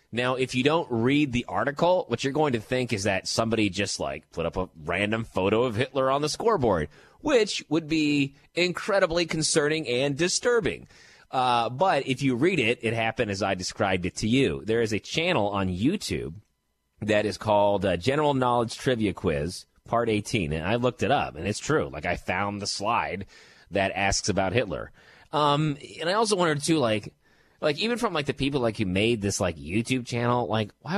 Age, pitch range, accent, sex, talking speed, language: 30-49, 95-140 Hz, American, male, 200 wpm, English